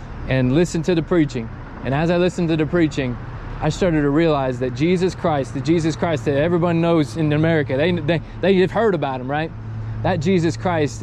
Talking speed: 205 wpm